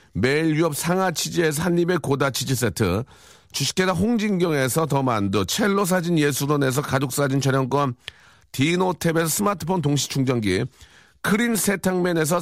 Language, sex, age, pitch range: Korean, male, 40-59, 135-185 Hz